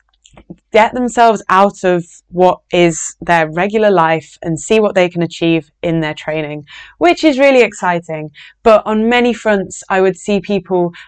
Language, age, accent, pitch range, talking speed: English, 20-39, British, 165-195 Hz, 165 wpm